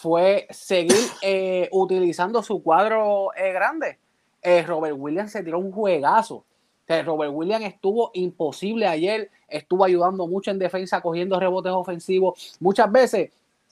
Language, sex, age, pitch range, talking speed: English, male, 30-49, 180-235 Hz, 140 wpm